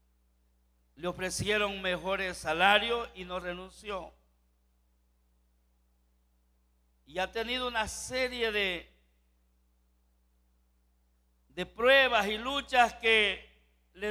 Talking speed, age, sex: 80 wpm, 60-79, male